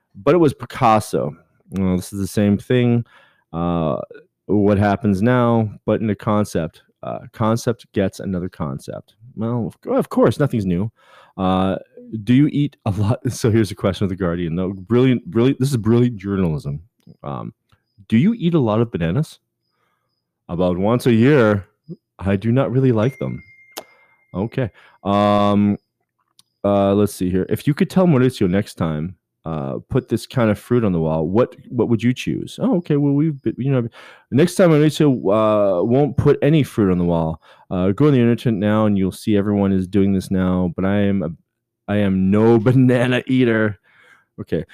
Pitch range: 100-130 Hz